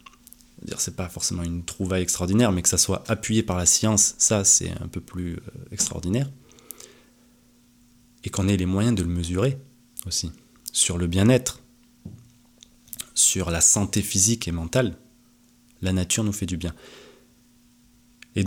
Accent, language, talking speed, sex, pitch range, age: French, French, 150 wpm, male, 100-120 Hz, 20-39